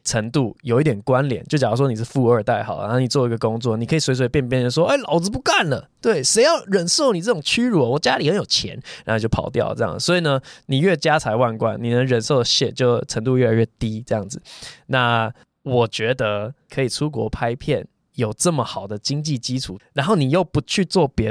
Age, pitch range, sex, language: 20-39, 120-165 Hz, male, Chinese